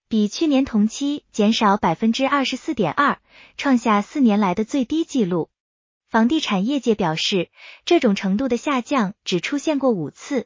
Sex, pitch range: female, 205-280 Hz